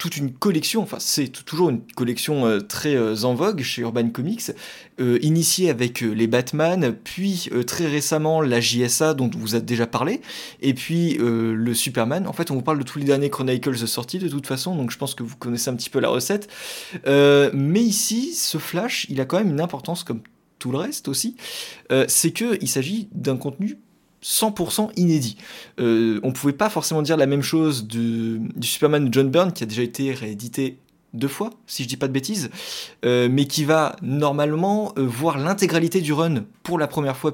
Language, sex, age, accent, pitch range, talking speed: French, male, 20-39, French, 125-175 Hz, 195 wpm